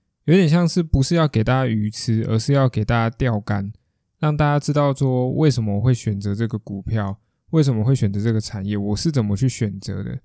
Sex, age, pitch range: male, 20-39, 105-140 Hz